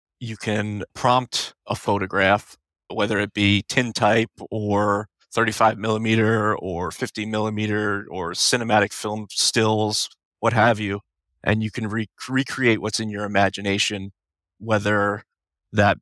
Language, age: English, 30-49